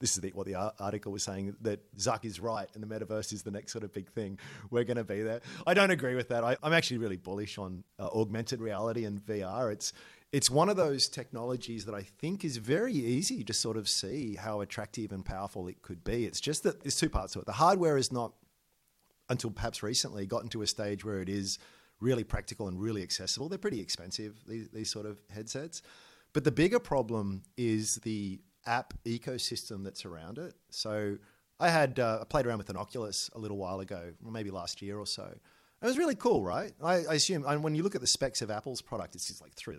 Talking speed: 230 wpm